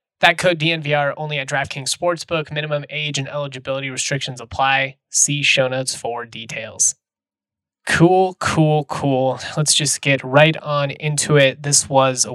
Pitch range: 125-145 Hz